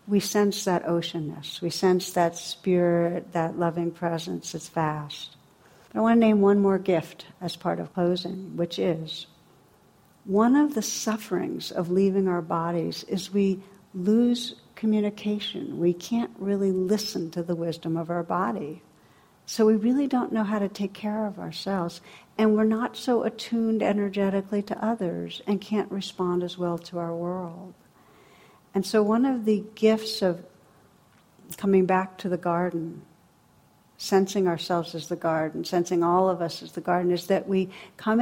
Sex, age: female, 60-79